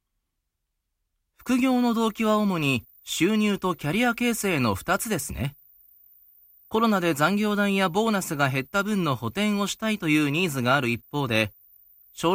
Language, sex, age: Japanese, male, 30-49